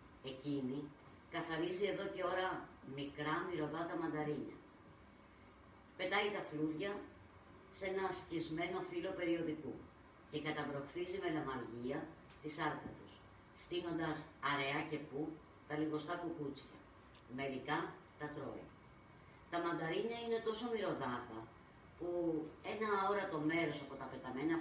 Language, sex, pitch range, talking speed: Greek, female, 140-175 Hz, 125 wpm